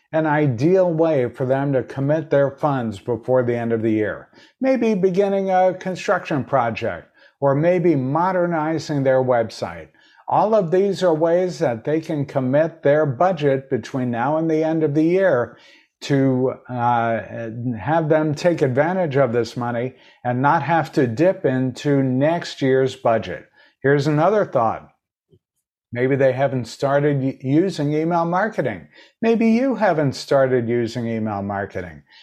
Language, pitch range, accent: English, 130-170 Hz, American